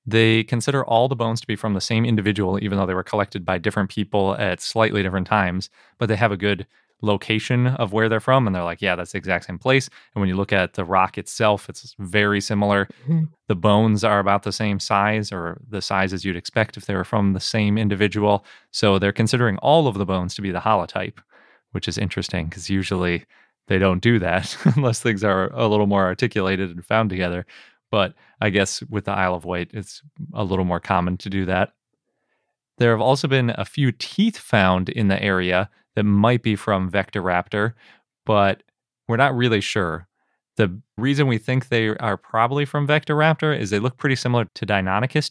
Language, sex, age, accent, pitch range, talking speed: English, male, 20-39, American, 95-115 Hz, 205 wpm